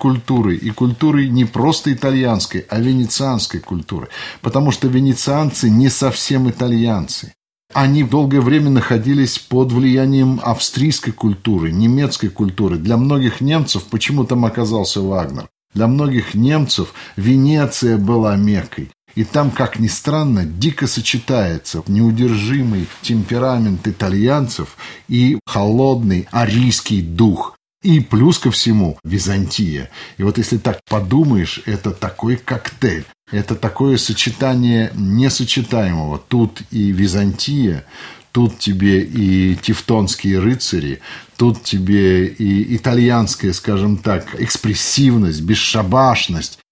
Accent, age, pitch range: native, 50-69, 95-125 Hz